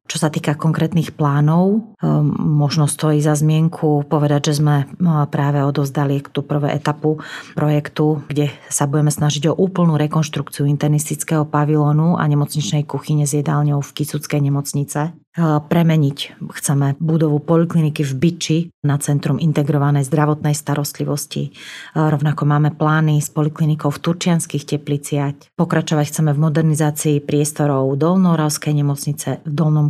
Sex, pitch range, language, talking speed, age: female, 140-155 Hz, Slovak, 130 wpm, 30-49